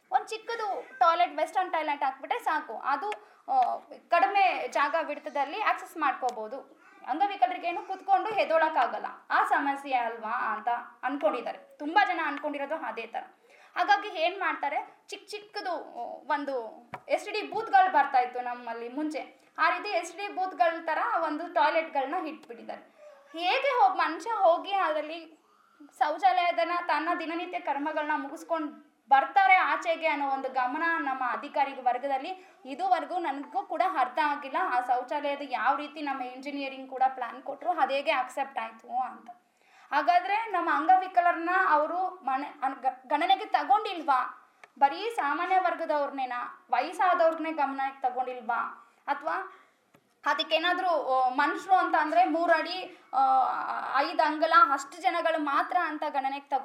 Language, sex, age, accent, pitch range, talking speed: English, female, 20-39, Indian, 275-370 Hz, 90 wpm